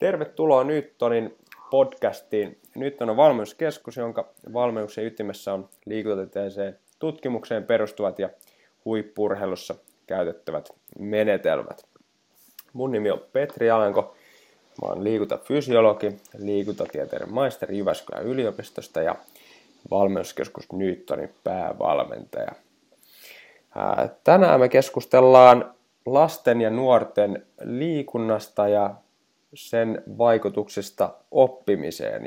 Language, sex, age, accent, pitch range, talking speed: Finnish, male, 20-39, native, 105-125 Hz, 80 wpm